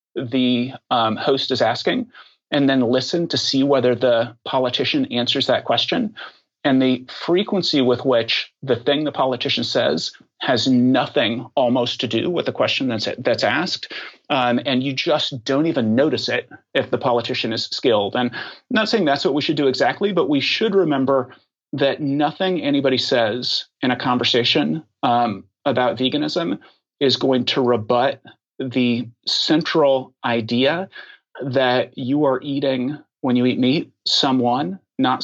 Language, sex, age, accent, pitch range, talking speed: English, male, 30-49, American, 120-140 Hz, 155 wpm